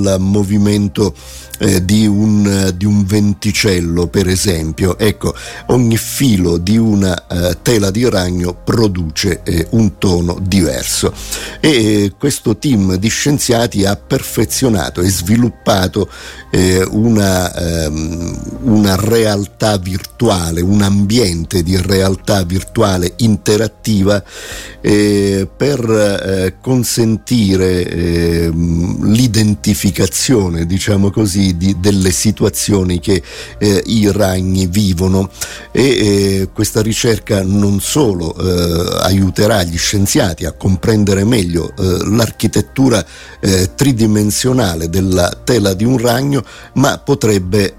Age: 50-69